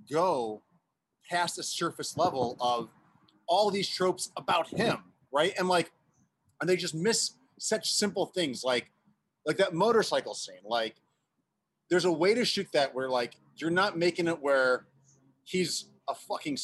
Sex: male